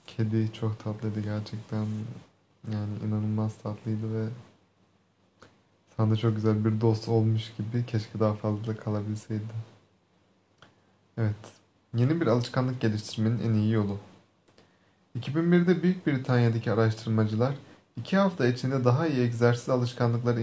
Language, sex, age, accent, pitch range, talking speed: Turkish, male, 30-49, native, 105-135 Hz, 110 wpm